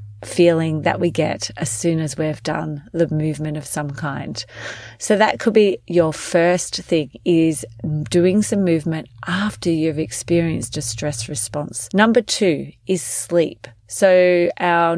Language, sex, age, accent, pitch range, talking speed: English, female, 30-49, Australian, 155-190 Hz, 150 wpm